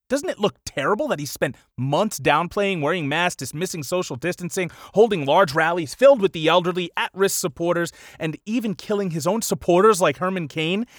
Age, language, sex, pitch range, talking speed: 30-49, English, male, 125-185 Hz, 175 wpm